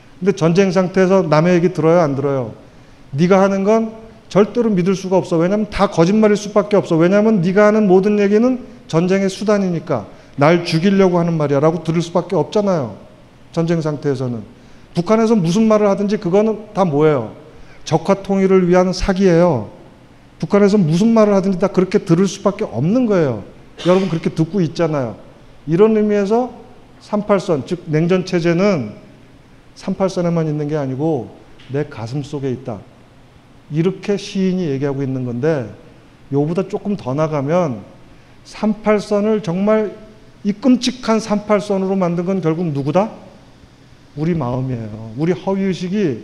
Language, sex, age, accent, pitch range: Korean, male, 40-59, native, 145-200 Hz